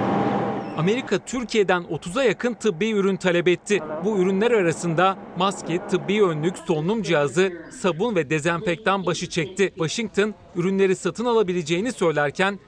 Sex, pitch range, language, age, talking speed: male, 170-210 Hz, Turkish, 40-59, 125 wpm